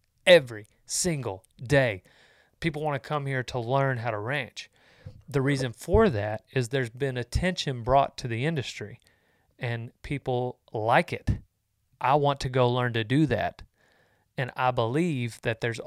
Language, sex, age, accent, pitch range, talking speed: English, male, 30-49, American, 115-140 Hz, 160 wpm